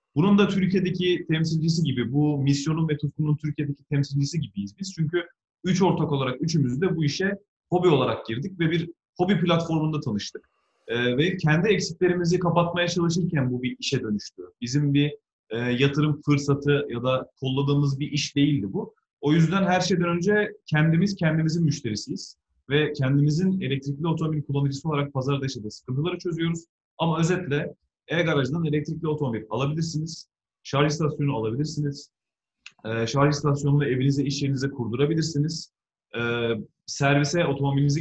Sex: male